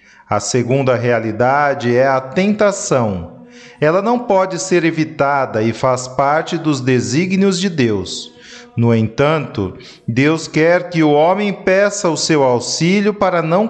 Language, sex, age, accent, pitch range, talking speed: Portuguese, male, 40-59, Brazilian, 130-185 Hz, 135 wpm